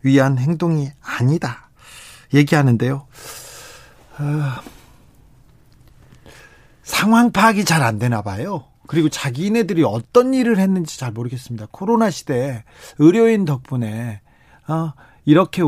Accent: native